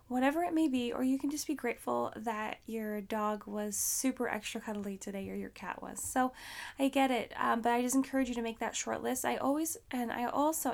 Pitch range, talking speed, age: 220-260 Hz, 235 wpm, 10-29